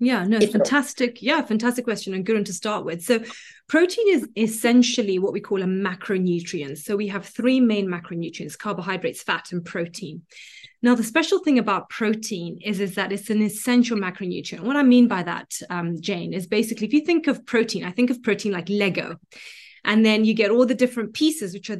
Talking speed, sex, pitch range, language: 200 wpm, female, 195-250 Hz, English